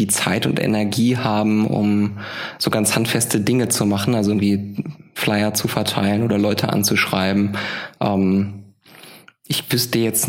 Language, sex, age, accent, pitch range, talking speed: German, male, 20-39, German, 105-120 Hz, 135 wpm